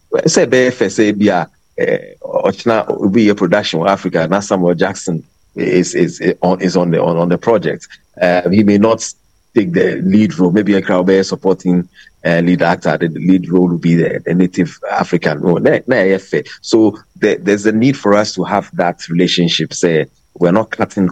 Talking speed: 180 wpm